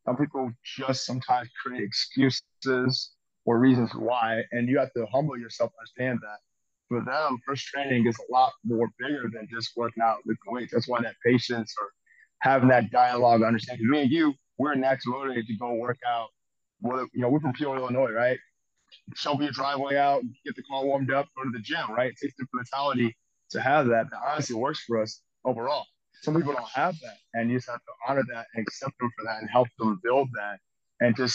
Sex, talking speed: male, 210 wpm